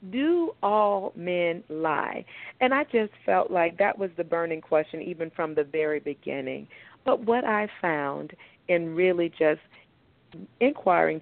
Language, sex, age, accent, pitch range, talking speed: English, female, 40-59, American, 160-215 Hz, 145 wpm